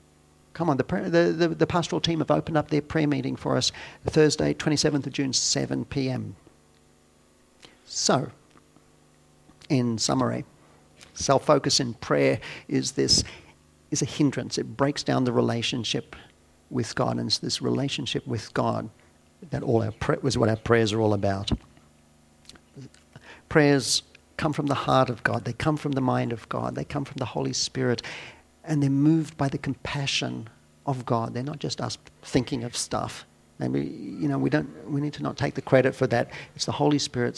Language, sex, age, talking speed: English, male, 50-69, 180 wpm